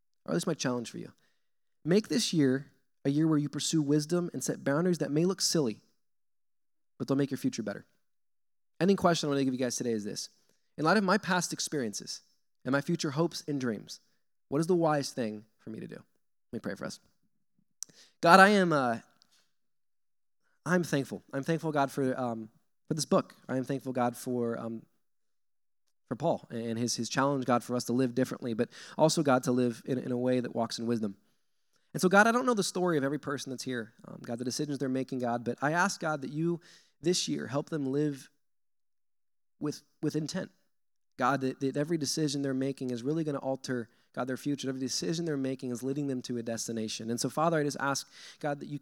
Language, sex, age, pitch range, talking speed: English, male, 20-39, 125-155 Hz, 220 wpm